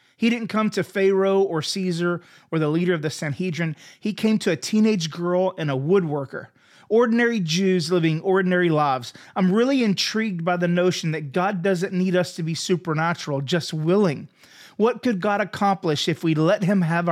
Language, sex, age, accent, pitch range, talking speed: English, male, 30-49, American, 155-205 Hz, 180 wpm